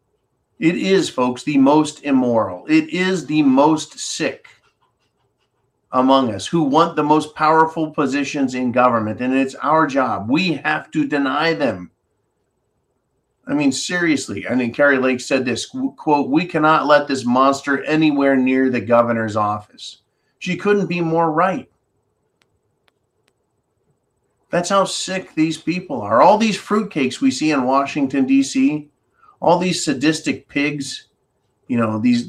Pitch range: 130-175 Hz